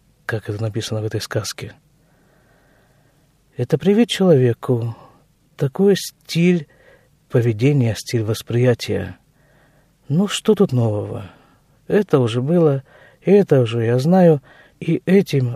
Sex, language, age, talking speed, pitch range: male, Russian, 50-69, 105 wpm, 125-155 Hz